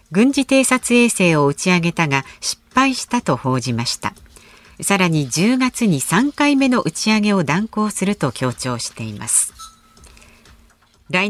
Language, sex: Japanese, female